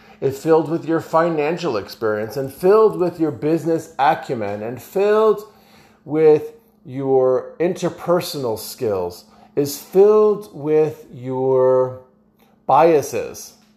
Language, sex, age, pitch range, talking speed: English, male, 40-59, 140-215 Hz, 100 wpm